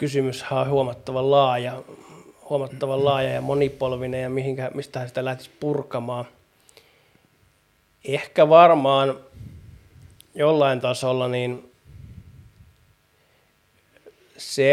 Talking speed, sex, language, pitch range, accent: 85 wpm, male, Finnish, 120-135 Hz, native